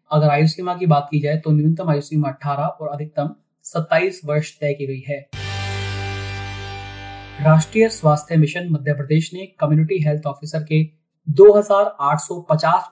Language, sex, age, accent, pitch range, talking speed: Hindi, male, 30-49, native, 140-160 Hz, 125 wpm